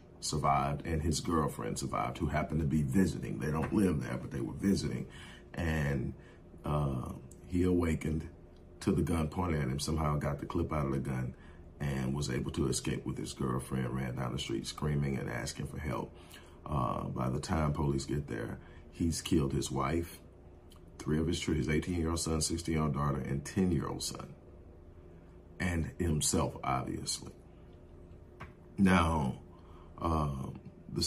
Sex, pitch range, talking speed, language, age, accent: male, 70-85 Hz, 170 wpm, English, 40-59, American